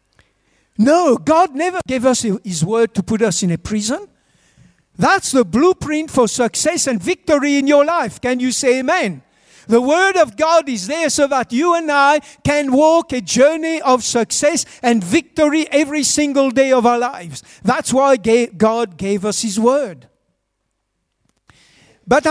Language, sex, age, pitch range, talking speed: English, male, 60-79, 200-270 Hz, 160 wpm